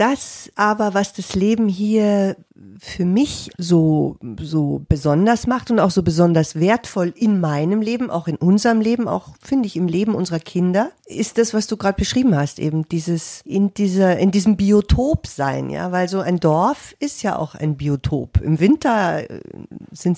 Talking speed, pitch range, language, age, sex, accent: 175 wpm, 160-210 Hz, German, 50-69, female, German